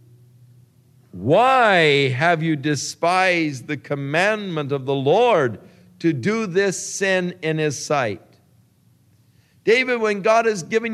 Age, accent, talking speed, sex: 60-79, American, 115 wpm, male